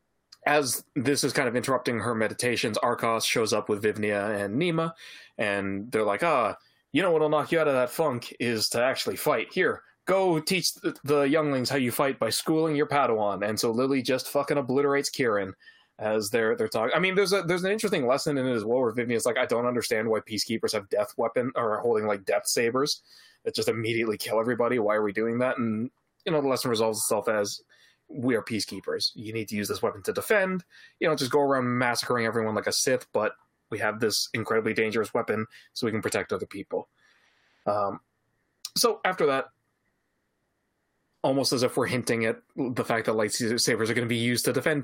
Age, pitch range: 20-39, 110-155 Hz